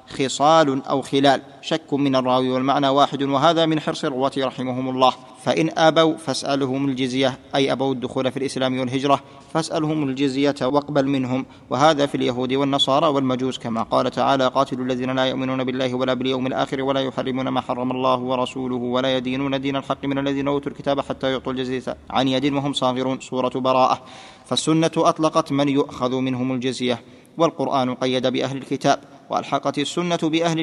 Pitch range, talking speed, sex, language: 130-140 Hz, 155 wpm, male, Arabic